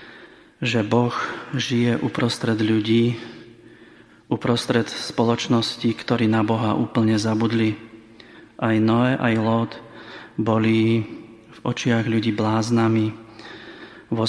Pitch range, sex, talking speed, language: 110-120 Hz, male, 90 wpm, Slovak